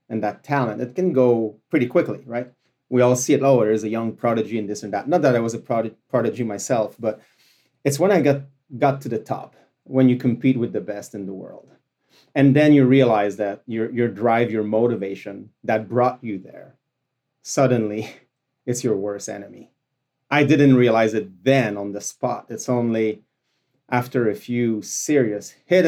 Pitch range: 115-135 Hz